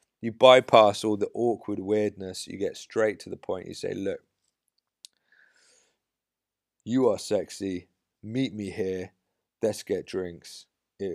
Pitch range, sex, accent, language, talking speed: 95-115 Hz, male, British, English, 135 wpm